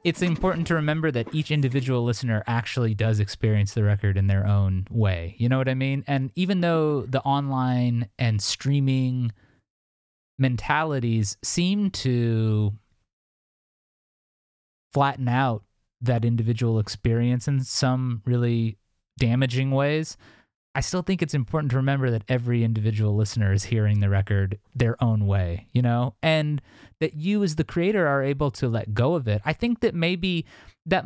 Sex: male